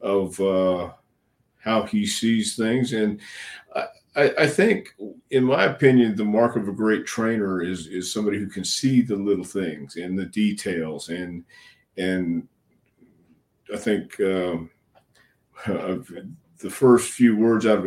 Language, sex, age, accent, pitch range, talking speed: English, male, 50-69, American, 90-110 Hz, 140 wpm